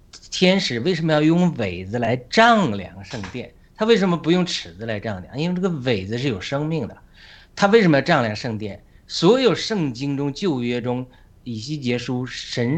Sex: male